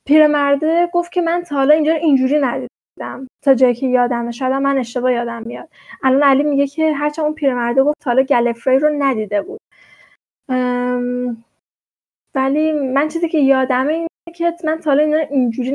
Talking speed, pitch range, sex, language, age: 175 wpm, 245-295 Hz, female, Persian, 10-29